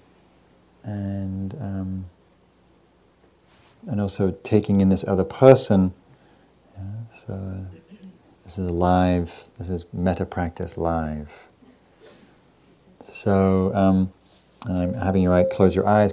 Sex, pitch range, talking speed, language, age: male, 85-105 Hz, 110 wpm, English, 40-59